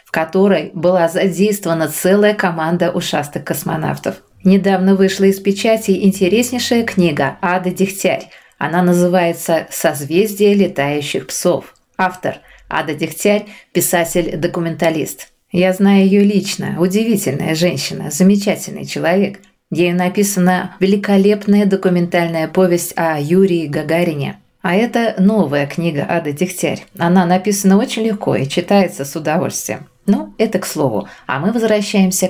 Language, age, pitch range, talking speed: English, 20-39, 165-195 Hz, 115 wpm